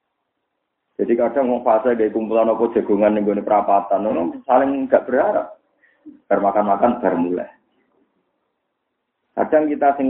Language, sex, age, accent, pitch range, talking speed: Indonesian, male, 30-49, native, 105-155 Hz, 115 wpm